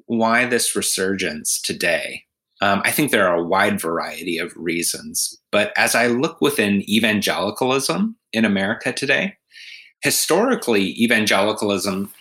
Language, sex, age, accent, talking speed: English, male, 30-49, American, 125 wpm